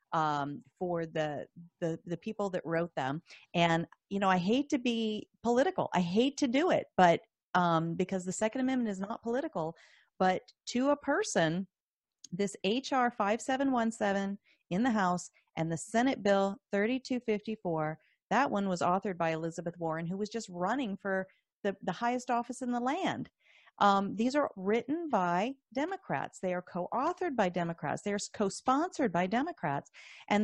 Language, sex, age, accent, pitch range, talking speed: English, female, 40-59, American, 180-245 Hz, 160 wpm